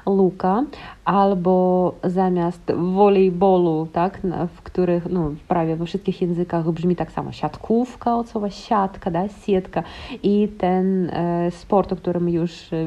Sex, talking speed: female, 125 wpm